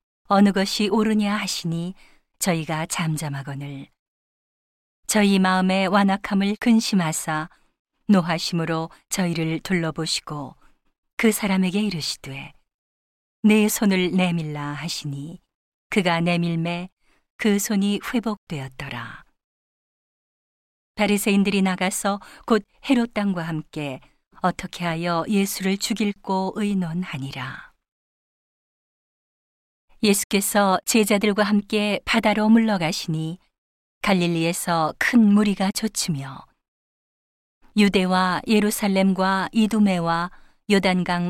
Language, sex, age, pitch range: Korean, female, 40-59, 165-210 Hz